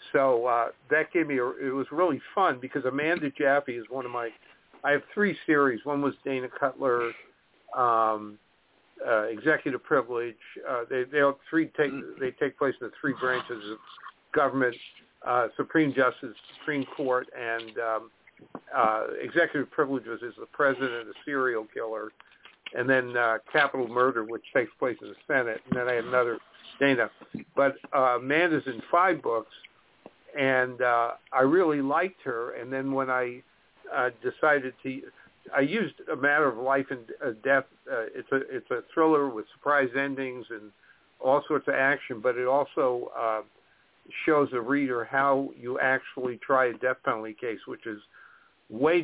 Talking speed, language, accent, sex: 170 wpm, English, American, male